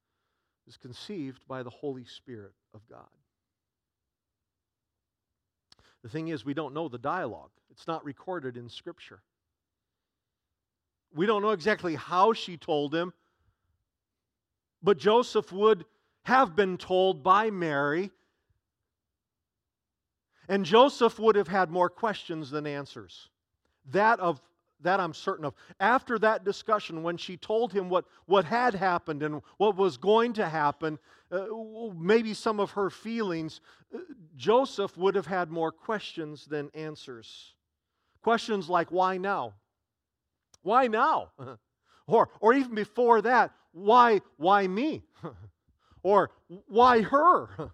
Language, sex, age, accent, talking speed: English, male, 50-69, American, 125 wpm